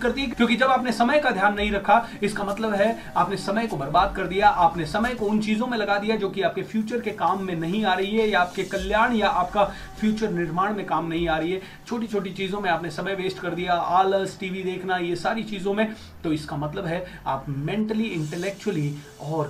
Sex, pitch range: male, 165-215 Hz